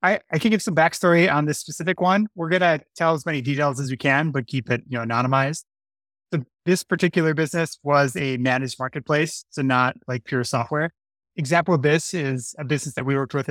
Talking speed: 220 wpm